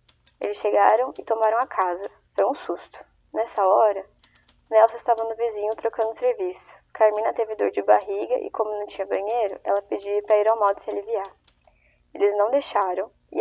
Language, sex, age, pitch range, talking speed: Portuguese, female, 10-29, 200-245 Hz, 175 wpm